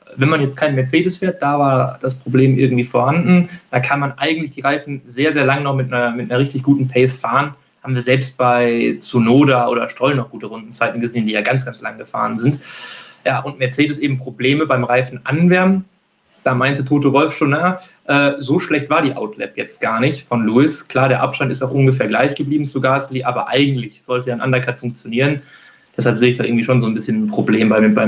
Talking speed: 215 wpm